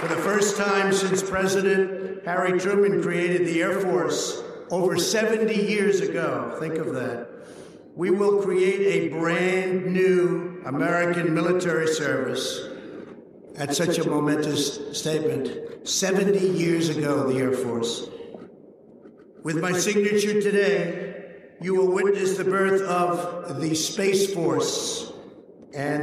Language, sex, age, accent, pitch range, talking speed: English, male, 60-79, American, 155-200 Hz, 120 wpm